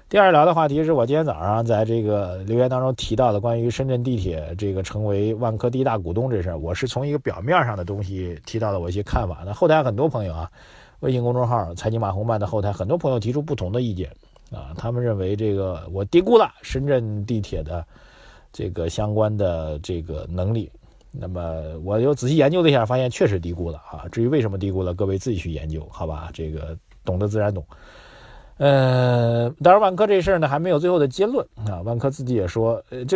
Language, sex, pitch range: Chinese, male, 100-135 Hz